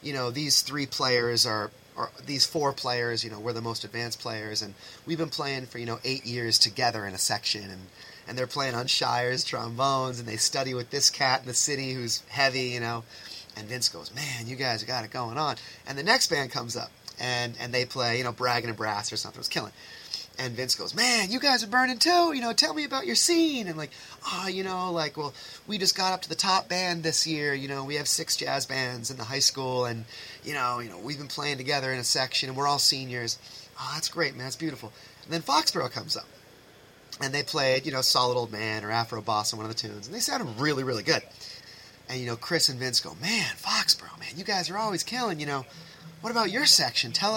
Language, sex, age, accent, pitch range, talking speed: English, male, 30-49, American, 120-160 Hz, 245 wpm